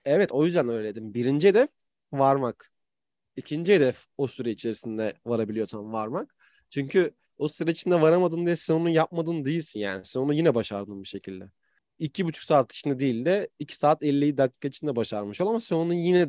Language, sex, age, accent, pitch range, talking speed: Turkish, male, 30-49, native, 115-165 Hz, 180 wpm